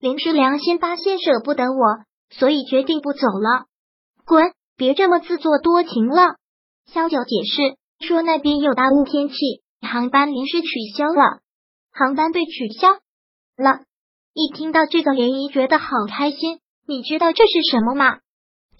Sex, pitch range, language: male, 260-330 Hz, Chinese